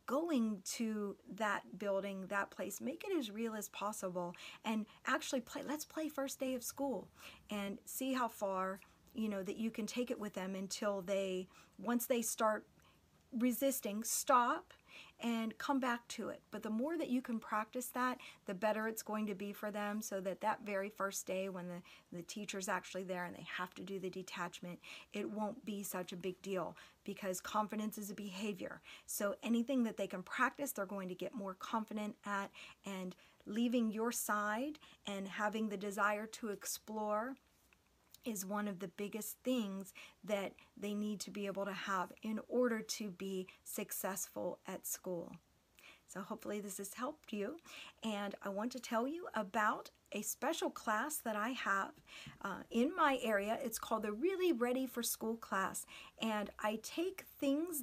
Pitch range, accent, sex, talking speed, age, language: 200-240 Hz, American, female, 180 wpm, 40-59, English